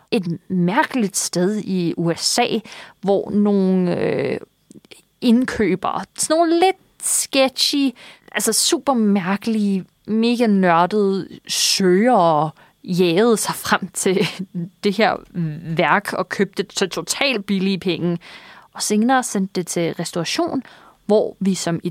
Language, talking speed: Danish, 120 wpm